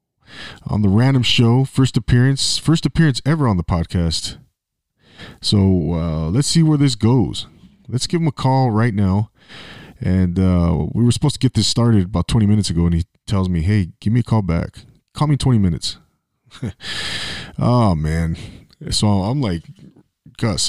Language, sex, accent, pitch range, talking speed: English, male, American, 90-120 Hz, 170 wpm